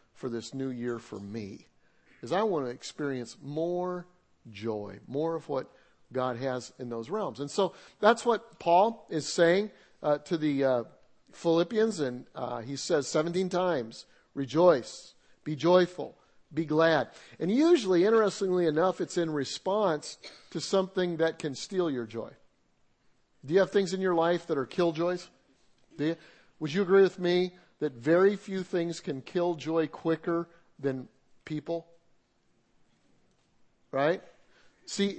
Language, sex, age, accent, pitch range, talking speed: English, male, 50-69, American, 145-185 Hz, 150 wpm